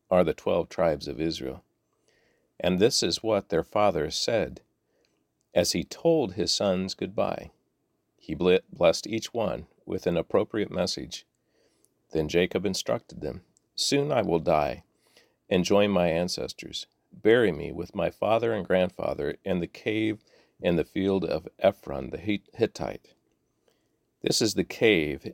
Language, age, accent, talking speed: English, 50-69, American, 140 wpm